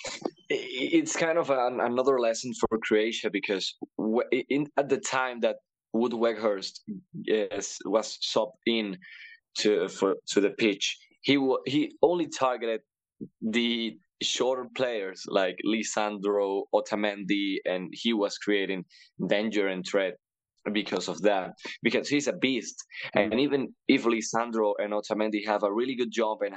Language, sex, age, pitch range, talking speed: English, male, 20-39, 105-145 Hz, 140 wpm